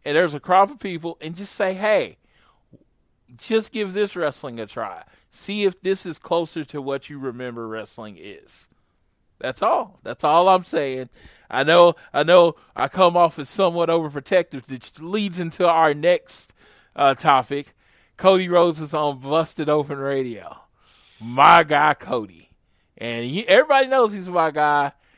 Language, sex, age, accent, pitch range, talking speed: English, male, 20-39, American, 125-170 Hz, 155 wpm